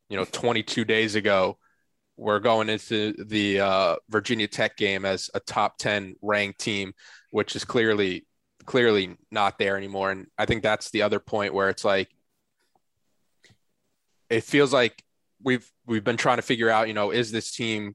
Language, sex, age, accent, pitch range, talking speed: English, male, 20-39, American, 105-120 Hz, 175 wpm